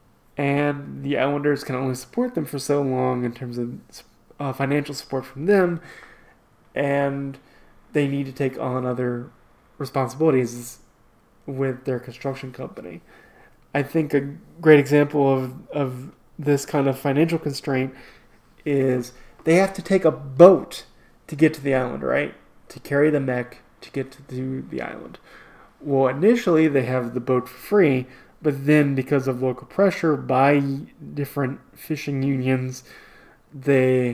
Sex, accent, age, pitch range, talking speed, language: male, American, 20-39, 130-150 Hz, 145 wpm, English